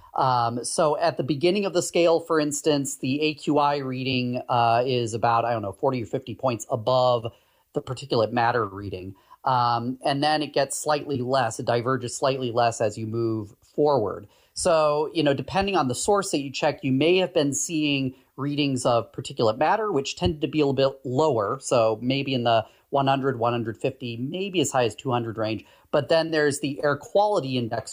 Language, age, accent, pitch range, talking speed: English, 30-49, American, 120-155 Hz, 190 wpm